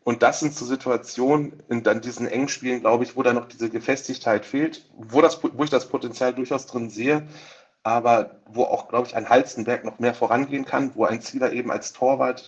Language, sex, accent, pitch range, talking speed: German, male, German, 115-130 Hz, 210 wpm